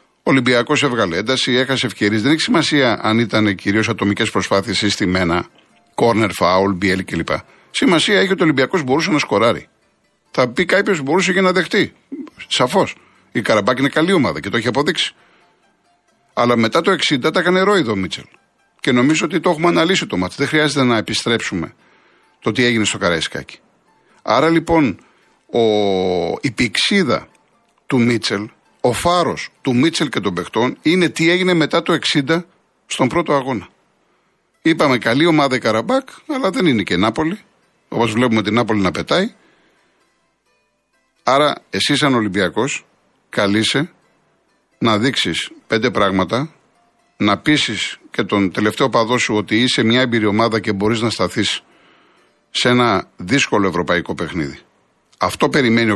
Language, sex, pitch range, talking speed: Greek, male, 105-150 Hz, 150 wpm